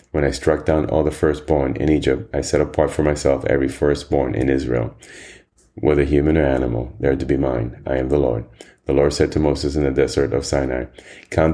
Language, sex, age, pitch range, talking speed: English, male, 30-49, 70-80 Hz, 215 wpm